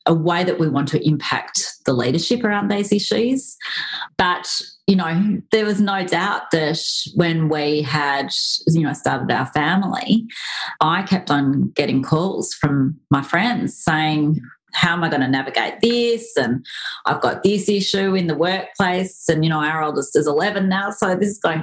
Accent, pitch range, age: Australian, 145-185 Hz, 30-49